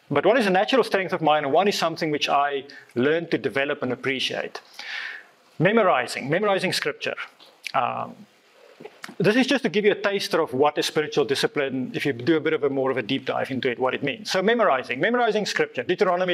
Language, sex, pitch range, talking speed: English, male, 150-210 Hz, 215 wpm